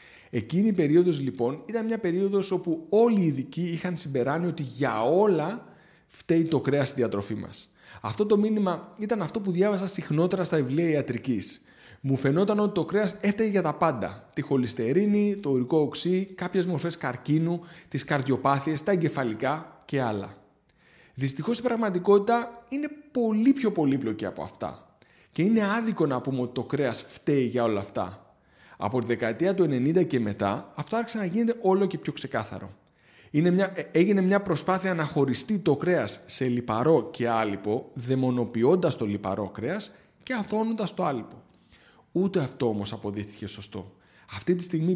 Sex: male